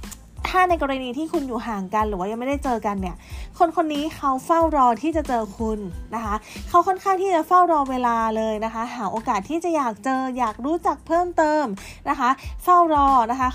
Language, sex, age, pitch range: Thai, female, 20-39, 215-295 Hz